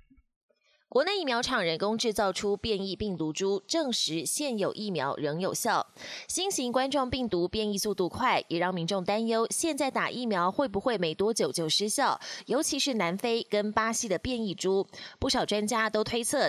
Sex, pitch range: female, 190-250 Hz